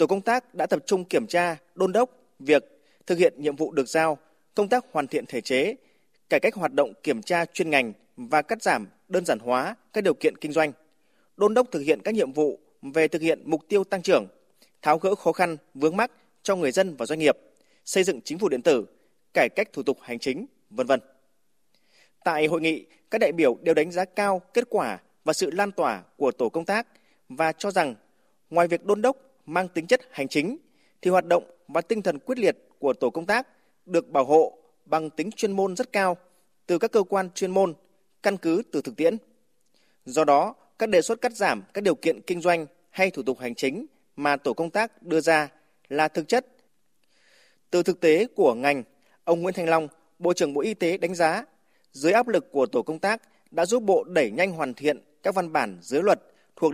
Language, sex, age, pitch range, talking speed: Vietnamese, male, 20-39, 155-215 Hz, 220 wpm